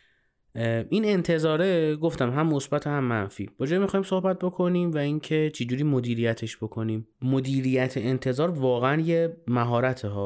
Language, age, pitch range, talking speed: Persian, 30-49, 115-150 Hz, 135 wpm